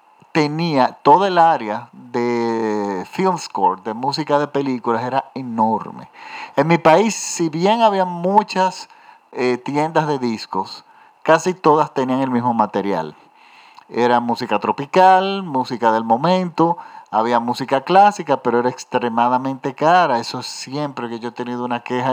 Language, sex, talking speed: Spanish, male, 140 wpm